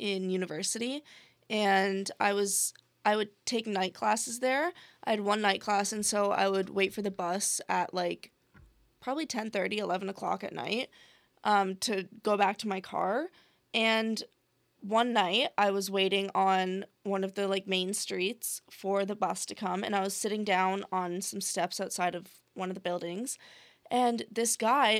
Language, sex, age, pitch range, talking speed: English, female, 20-39, 195-240 Hz, 180 wpm